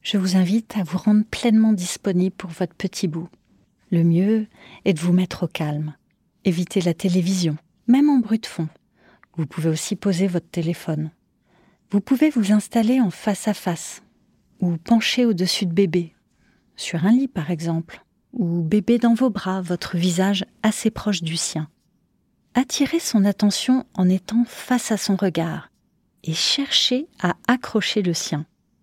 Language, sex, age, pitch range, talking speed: French, female, 30-49, 175-220 Hz, 160 wpm